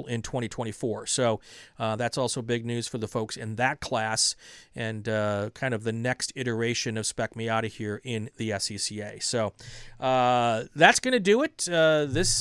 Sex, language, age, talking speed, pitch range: male, English, 40-59, 175 wpm, 115-145 Hz